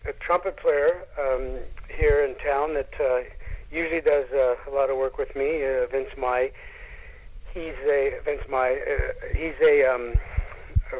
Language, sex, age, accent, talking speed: English, male, 50-69, American, 165 wpm